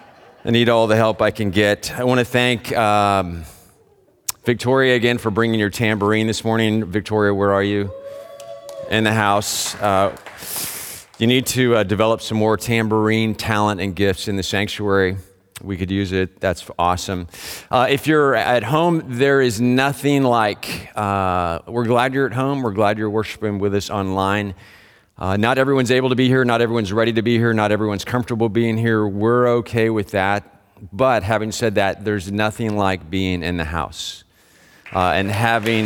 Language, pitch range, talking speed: English, 95-120 Hz, 180 wpm